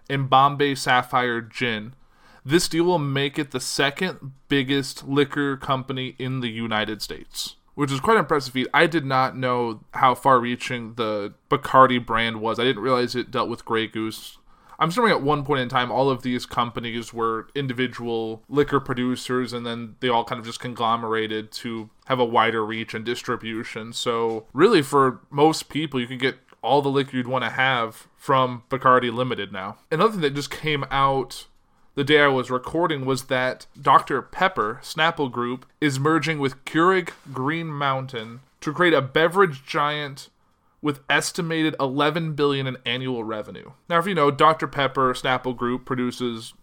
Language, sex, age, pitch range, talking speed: English, male, 20-39, 120-145 Hz, 175 wpm